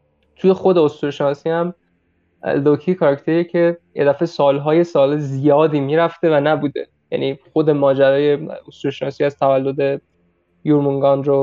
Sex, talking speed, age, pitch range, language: male, 105 wpm, 20-39, 140-165 Hz, Persian